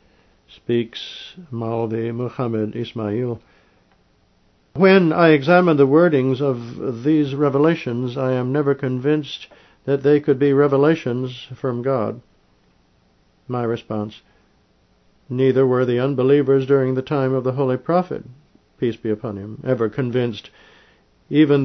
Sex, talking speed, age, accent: male, 120 wpm, 60-79, American